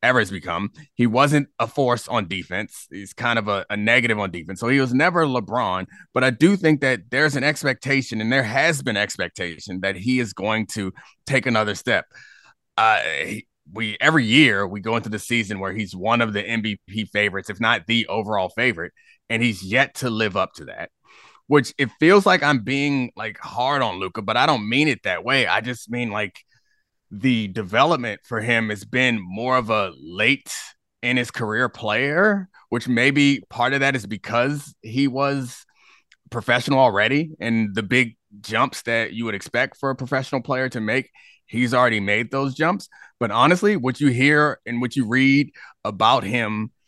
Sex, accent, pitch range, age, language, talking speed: male, American, 105-135 Hz, 30-49, English, 190 wpm